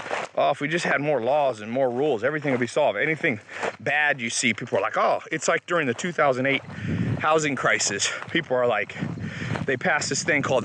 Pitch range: 130-170 Hz